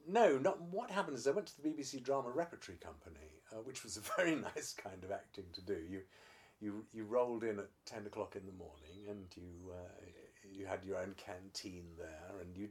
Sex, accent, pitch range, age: male, British, 100-150 Hz, 50-69